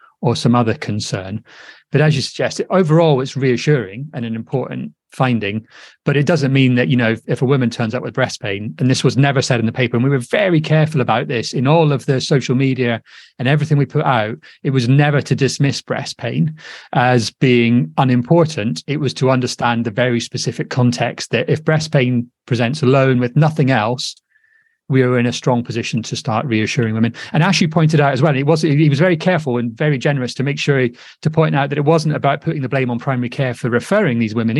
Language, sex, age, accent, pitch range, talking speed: English, male, 30-49, British, 120-150 Hz, 225 wpm